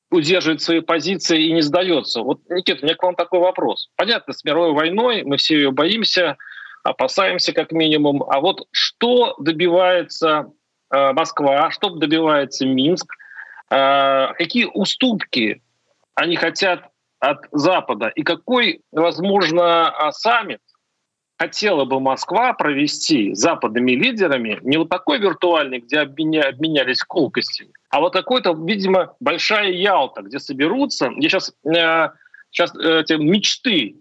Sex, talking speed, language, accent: male, 125 wpm, Russian, native